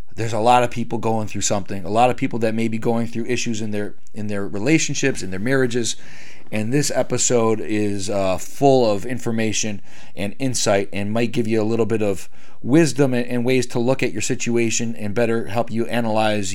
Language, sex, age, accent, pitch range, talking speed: English, male, 40-59, American, 110-135 Hz, 205 wpm